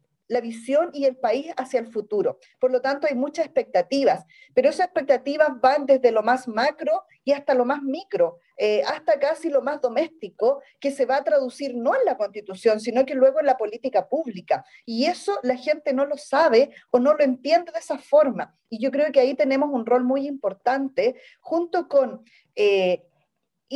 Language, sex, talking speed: Spanish, female, 190 wpm